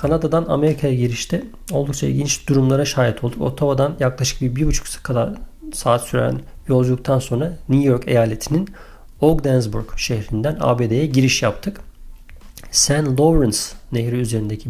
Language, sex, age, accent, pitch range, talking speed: Turkish, male, 50-69, native, 120-150 Hz, 125 wpm